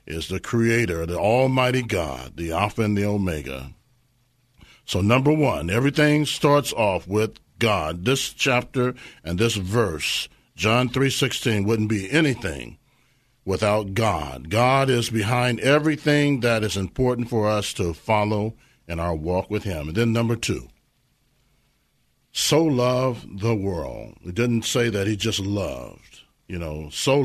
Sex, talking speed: male, 145 wpm